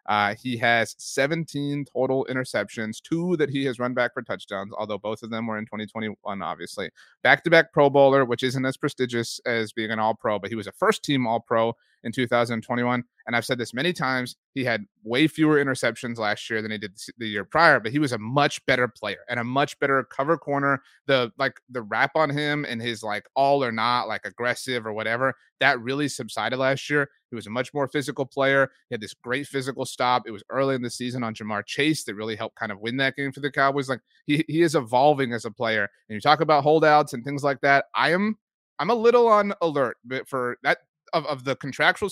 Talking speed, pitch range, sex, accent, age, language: 225 wpm, 115-150 Hz, male, American, 30-49, English